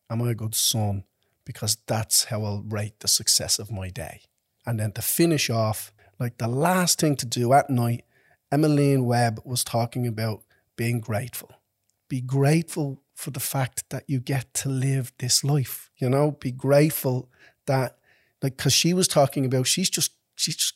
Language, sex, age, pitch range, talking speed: English, male, 40-59, 120-145 Hz, 180 wpm